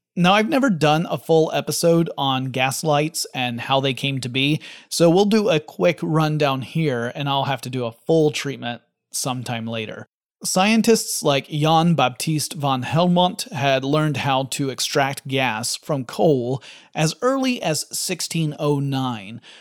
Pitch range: 135-175 Hz